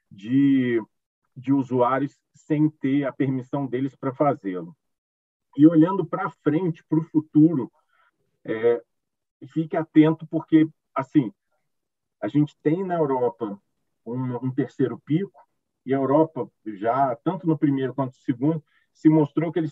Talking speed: 135 wpm